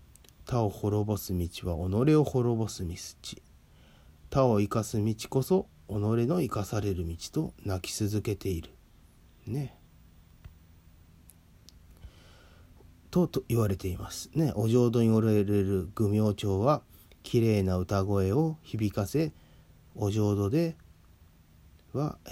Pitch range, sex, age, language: 90-110 Hz, male, 30-49, Japanese